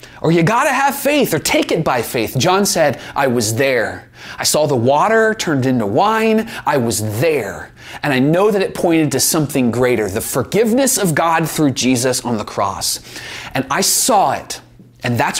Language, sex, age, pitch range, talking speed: English, male, 30-49, 120-185 Hz, 190 wpm